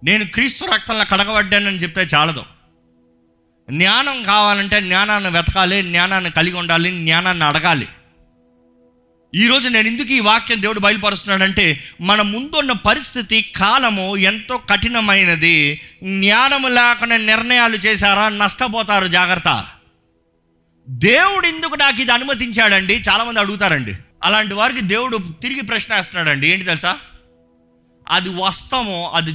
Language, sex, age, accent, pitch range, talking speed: Telugu, male, 30-49, native, 155-235 Hz, 110 wpm